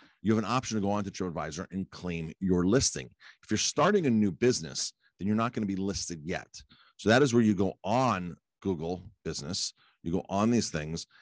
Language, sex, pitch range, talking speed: English, male, 85-110 Hz, 225 wpm